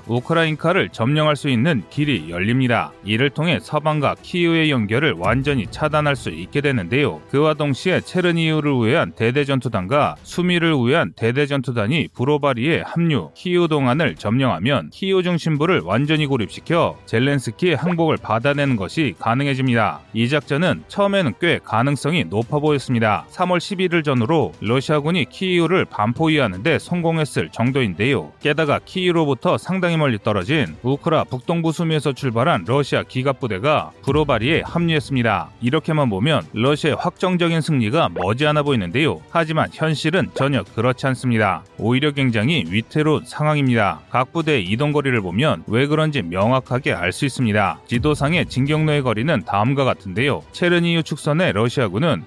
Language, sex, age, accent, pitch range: Korean, male, 30-49, native, 120-160 Hz